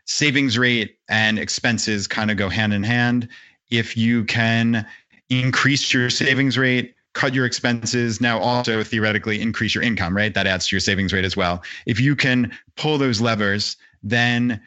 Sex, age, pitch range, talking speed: male, 30-49, 110-125 Hz, 170 wpm